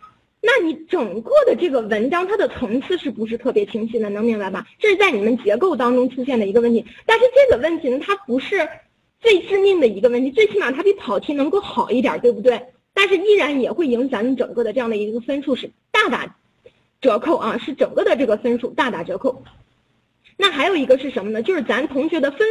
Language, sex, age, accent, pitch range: Chinese, female, 20-39, native, 245-390 Hz